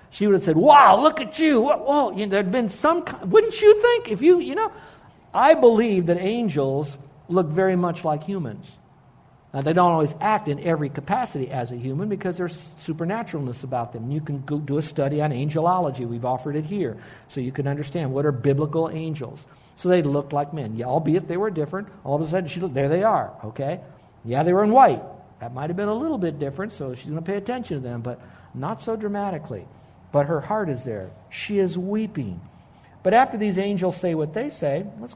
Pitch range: 140-190 Hz